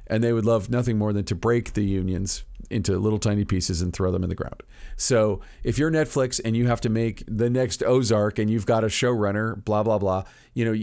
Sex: male